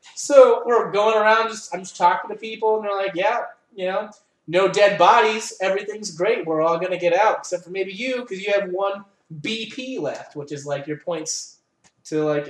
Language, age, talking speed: English, 20-39, 200 wpm